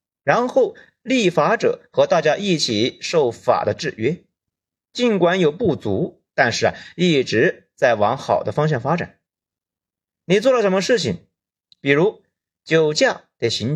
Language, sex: Chinese, male